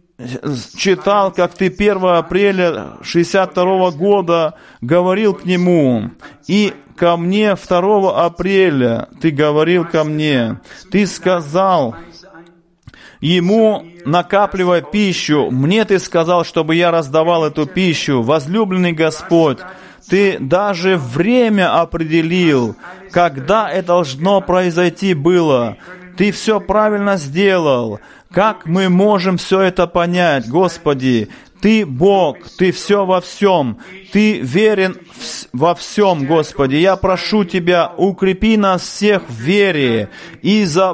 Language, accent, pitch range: Russian, native, 170-200 Hz